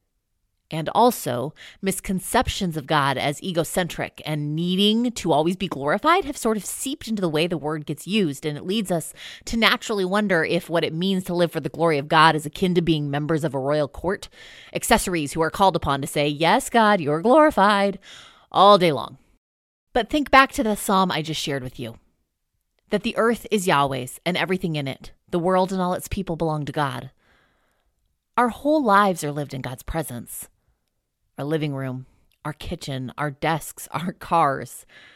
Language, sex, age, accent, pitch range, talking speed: English, female, 20-39, American, 145-195 Hz, 190 wpm